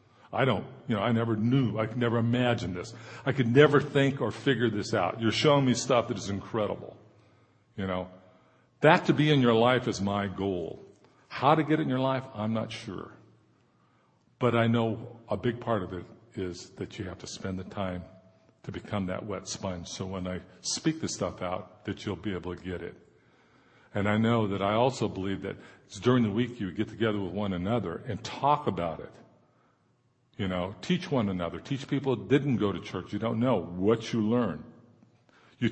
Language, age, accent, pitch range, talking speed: English, 50-69, American, 100-130 Hz, 210 wpm